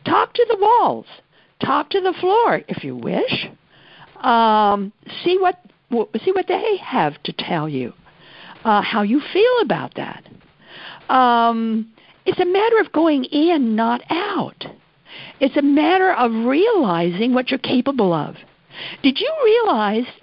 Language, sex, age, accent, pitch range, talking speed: English, female, 60-79, American, 205-320 Hz, 145 wpm